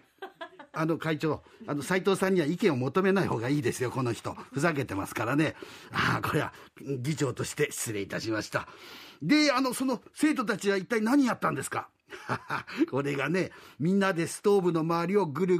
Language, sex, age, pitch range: Japanese, male, 50-69, 155-210 Hz